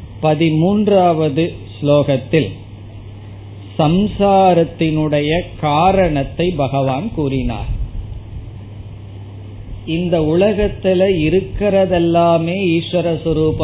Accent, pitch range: native, 130-170 Hz